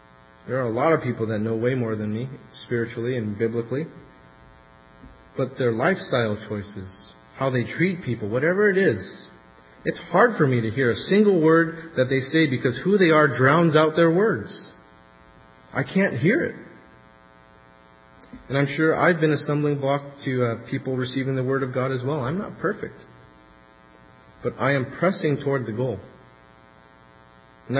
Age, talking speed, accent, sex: 30-49, 170 wpm, American, female